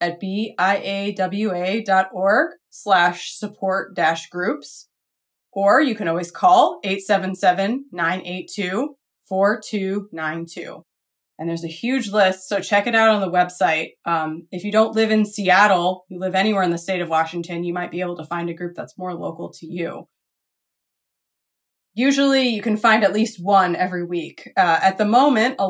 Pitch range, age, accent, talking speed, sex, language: 180-230 Hz, 20-39, American, 150 wpm, female, English